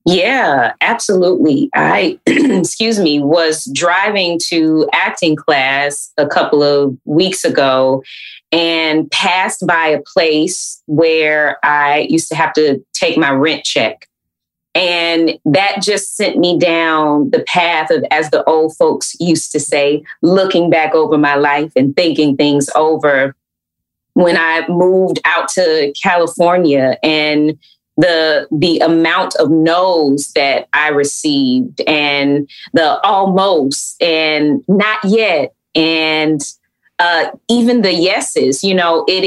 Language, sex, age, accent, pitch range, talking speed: English, female, 20-39, American, 150-185 Hz, 130 wpm